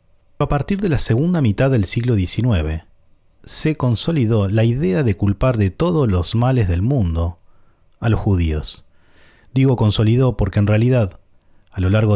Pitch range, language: 90-120 Hz, Spanish